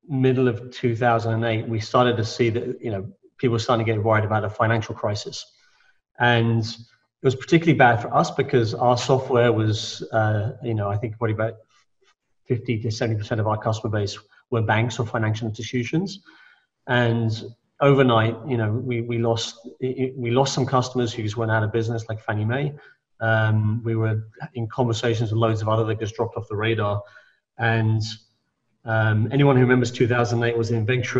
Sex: male